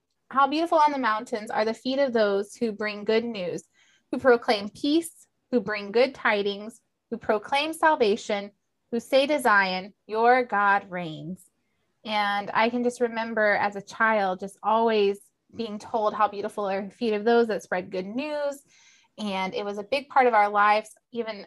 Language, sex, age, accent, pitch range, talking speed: English, female, 20-39, American, 205-245 Hz, 180 wpm